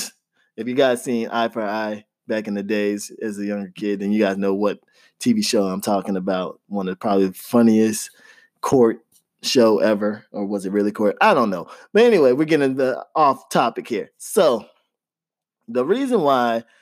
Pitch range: 120-155 Hz